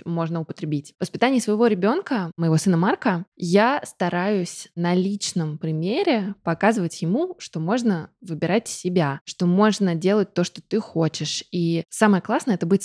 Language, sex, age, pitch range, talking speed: Russian, female, 20-39, 165-210 Hz, 150 wpm